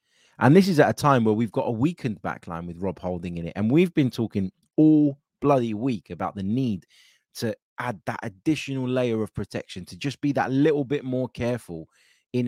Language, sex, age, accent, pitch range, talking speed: English, male, 20-39, British, 100-135 Hz, 210 wpm